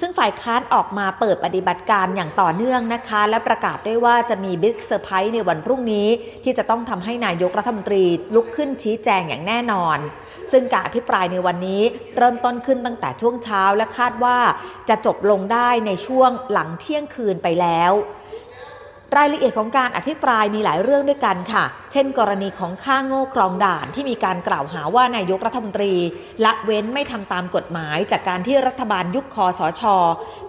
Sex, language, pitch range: female, Thai, 185-245 Hz